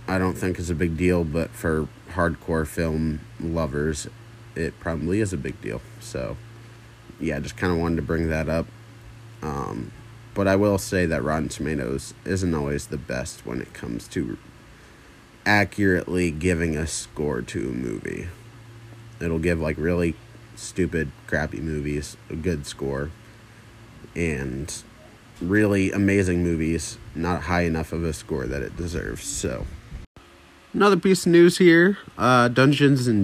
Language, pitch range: English, 75-105 Hz